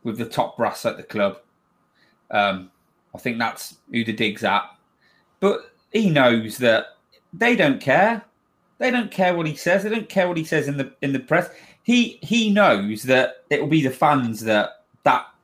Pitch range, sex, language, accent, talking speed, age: 125-200 Hz, male, English, British, 195 wpm, 30-49